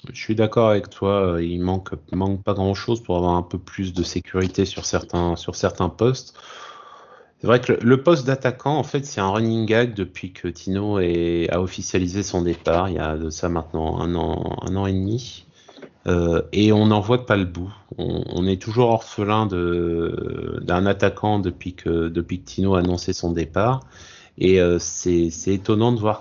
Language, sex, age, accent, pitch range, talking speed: French, male, 30-49, French, 90-115 Hz, 200 wpm